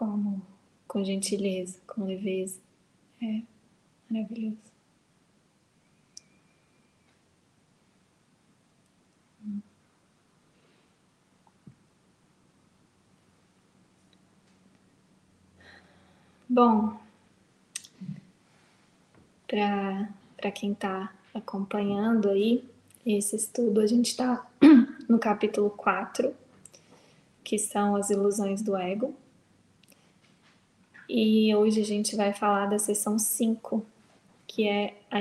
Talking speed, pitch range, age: 65 wpm, 200-225 Hz, 20-39